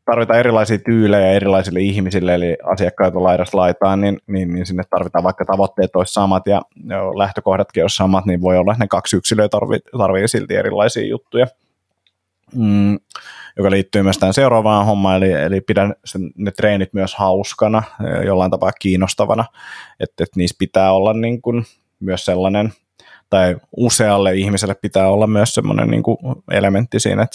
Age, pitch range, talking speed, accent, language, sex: 20-39, 95-105 Hz, 155 wpm, native, Finnish, male